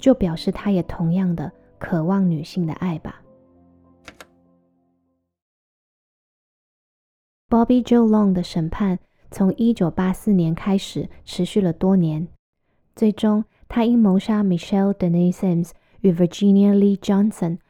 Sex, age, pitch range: female, 20-39, 170-200 Hz